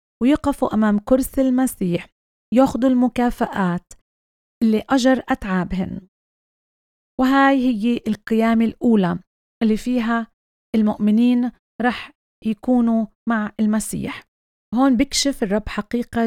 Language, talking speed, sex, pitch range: Arabic, 90 wpm, female, 205-240 Hz